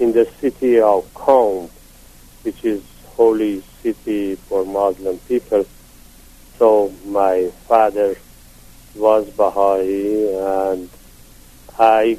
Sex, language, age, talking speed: male, English, 50-69, 95 wpm